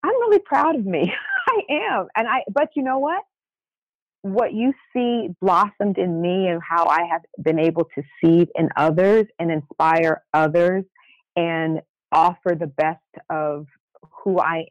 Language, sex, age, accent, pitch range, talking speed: English, female, 40-59, American, 155-190 Hz, 160 wpm